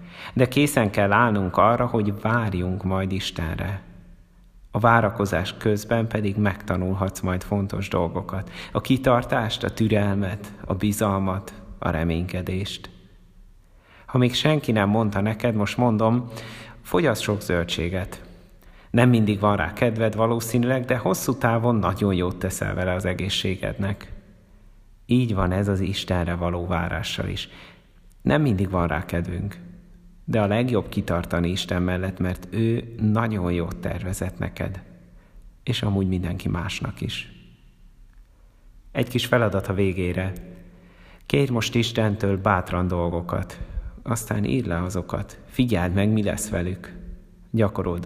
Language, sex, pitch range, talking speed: Hungarian, male, 90-110 Hz, 125 wpm